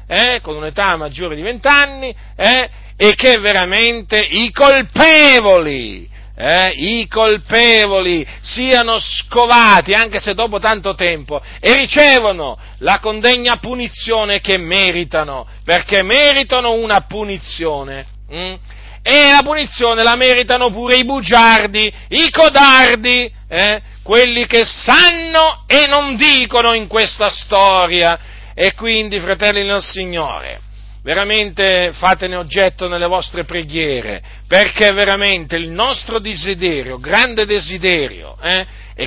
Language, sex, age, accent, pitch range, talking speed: Italian, male, 40-59, native, 180-245 Hz, 110 wpm